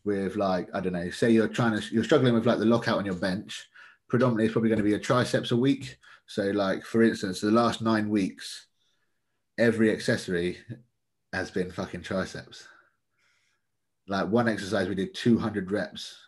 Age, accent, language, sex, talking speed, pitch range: 30-49, British, English, male, 180 wpm, 95-115 Hz